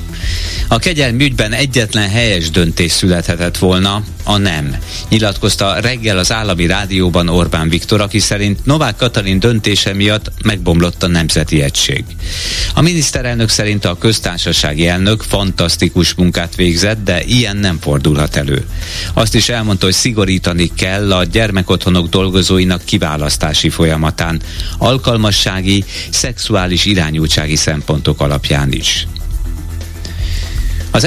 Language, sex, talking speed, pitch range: Hungarian, male, 110 wpm, 85-105 Hz